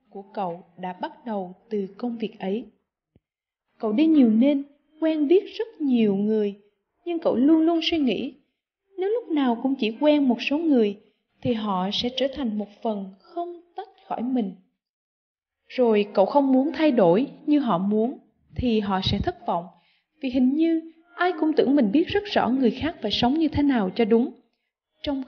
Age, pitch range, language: 20-39, 210-290 Hz, Vietnamese